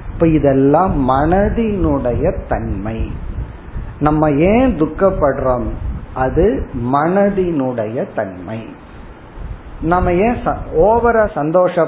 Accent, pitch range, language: native, 130-180 Hz, Tamil